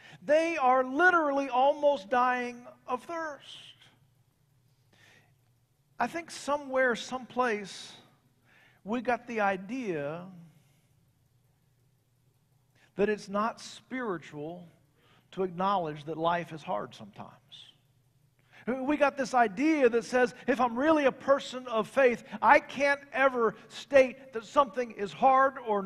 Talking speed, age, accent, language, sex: 110 wpm, 50-69, American, English, male